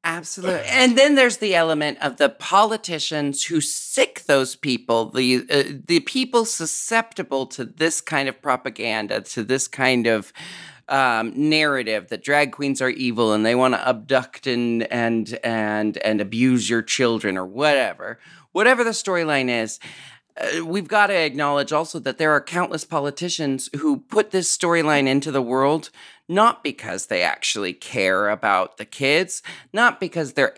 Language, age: English, 40-59